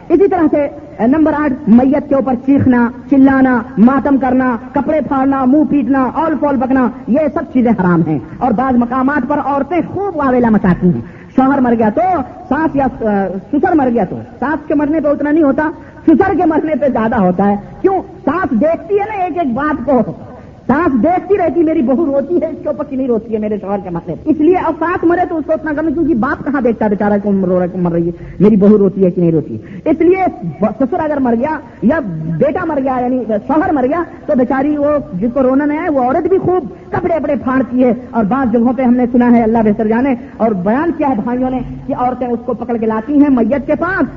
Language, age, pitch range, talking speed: Urdu, 50-69, 235-300 Hz, 205 wpm